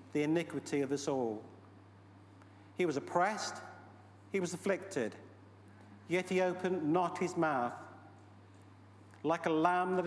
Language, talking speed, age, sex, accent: English, 125 wpm, 50-69, male, British